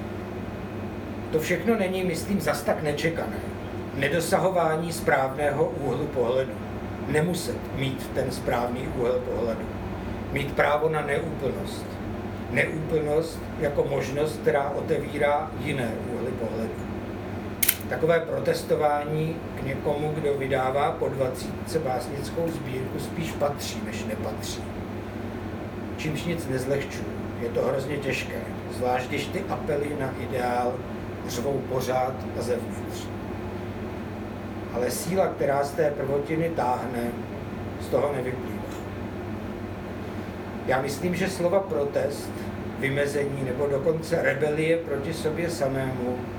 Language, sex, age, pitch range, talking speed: Czech, male, 60-79, 110-145 Hz, 105 wpm